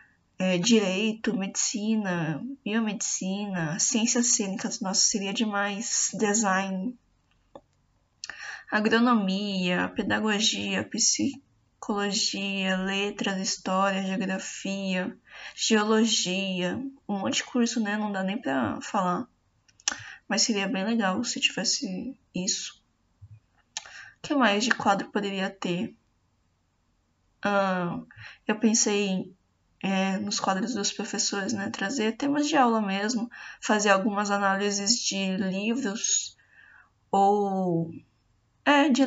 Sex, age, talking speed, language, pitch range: female, 10-29, 95 wpm, Portuguese, 195-230 Hz